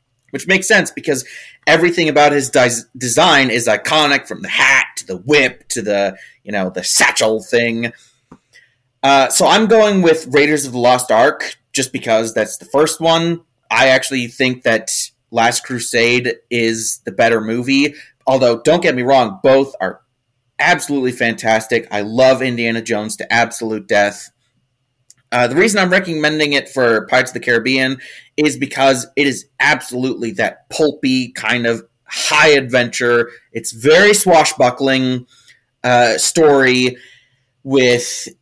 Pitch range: 120-145 Hz